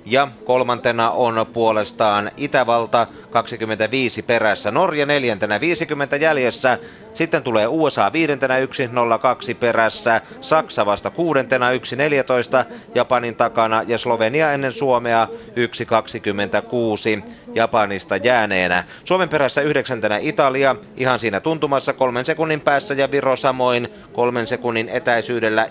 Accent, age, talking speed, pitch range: native, 30-49, 110 wpm, 120-140 Hz